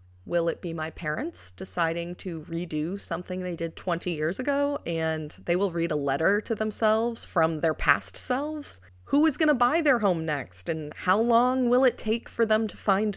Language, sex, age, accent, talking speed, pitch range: English, female, 30-49, American, 195 wpm, 160-220 Hz